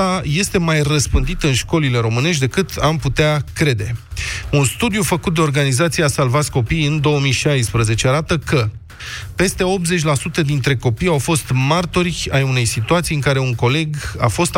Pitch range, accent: 120-160 Hz, native